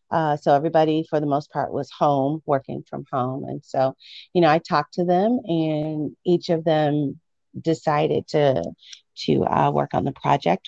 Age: 40-59